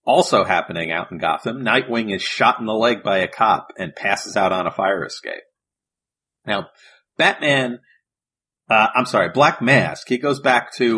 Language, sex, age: English, male, 40-59